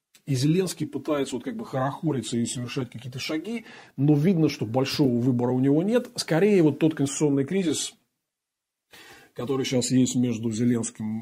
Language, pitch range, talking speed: Russian, 120-155 Hz, 150 wpm